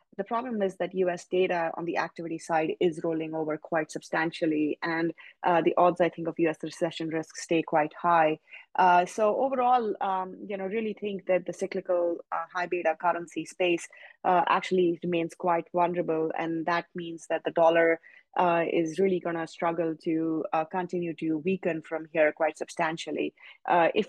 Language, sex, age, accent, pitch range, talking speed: English, female, 30-49, Indian, 165-185 Hz, 180 wpm